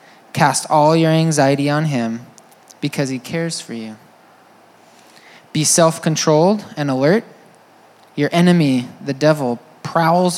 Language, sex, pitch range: English, male, 135-170 Hz